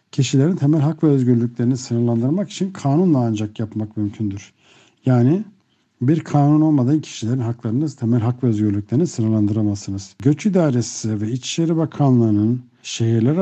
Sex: male